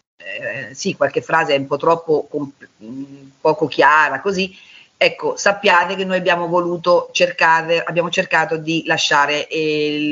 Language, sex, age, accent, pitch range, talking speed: Italian, female, 50-69, native, 155-200 Hz, 140 wpm